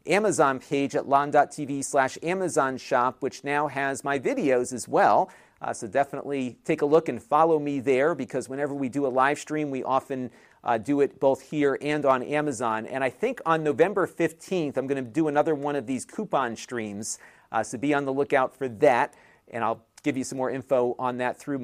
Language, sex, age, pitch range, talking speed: English, male, 40-59, 130-155 Hz, 210 wpm